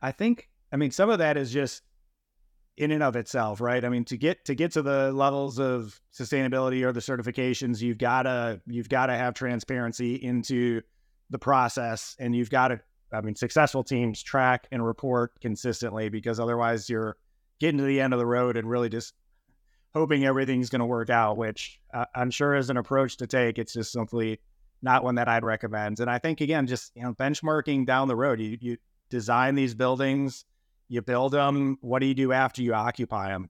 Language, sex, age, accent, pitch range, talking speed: English, male, 30-49, American, 115-130 Hz, 200 wpm